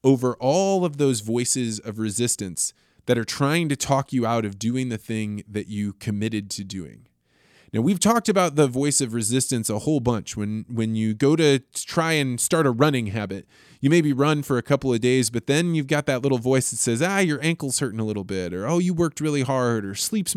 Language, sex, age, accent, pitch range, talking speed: English, male, 20-39, American, 115-150 Hz, 225 wpm